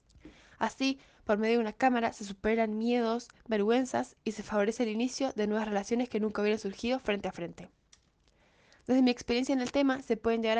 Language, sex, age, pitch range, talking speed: Spanish, female, 10-29, 200-235 Hz, 195 wpm